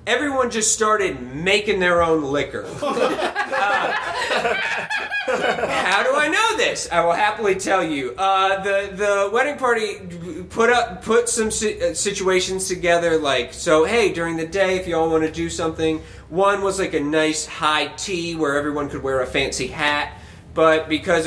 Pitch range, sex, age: 150-195 Hz, male, 30-49